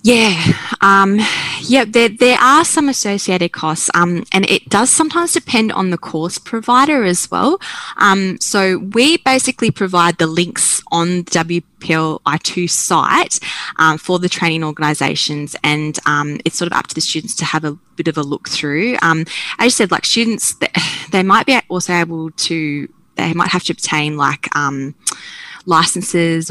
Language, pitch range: English, 155-195 Hz